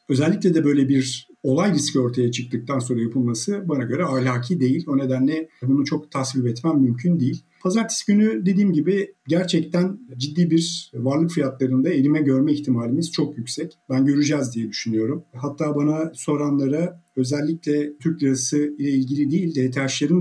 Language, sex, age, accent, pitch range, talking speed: Turkish, male, 50-69, native, 135-165 Hz, 150 wpm